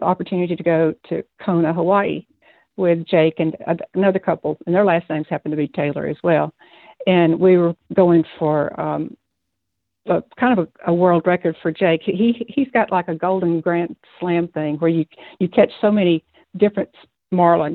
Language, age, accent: English, 60-79, American